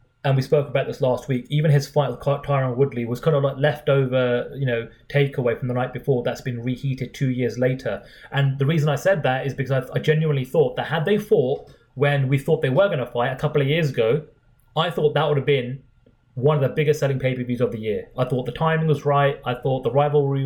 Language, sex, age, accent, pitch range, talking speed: English, male, 30-49, British, 125-150 Hz, 245 wpm